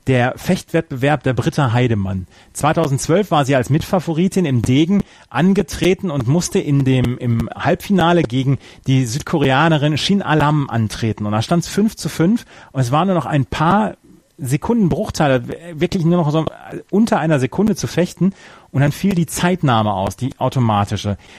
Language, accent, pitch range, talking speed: German, German, 130-175 Hz, 165 wpm